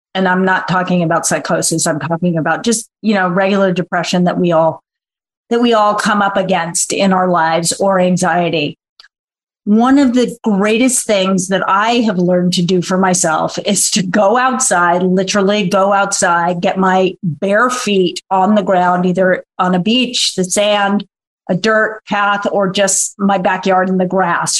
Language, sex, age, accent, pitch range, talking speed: English, female, 40-59, American, 185-215 Hz, 175 wpm